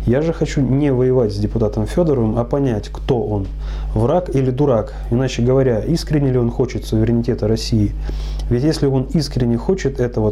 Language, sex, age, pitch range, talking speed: Russian, male, 30-49, 115-135 Hz, 170 wpm